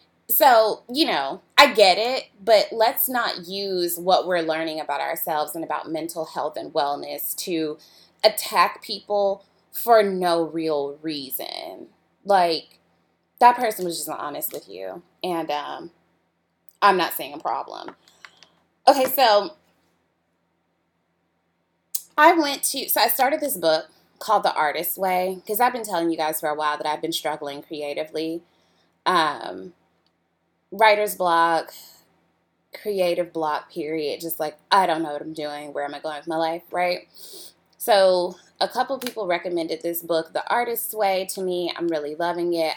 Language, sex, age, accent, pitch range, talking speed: English, female, 20-39, American, 155-205 Hz, 155 wpm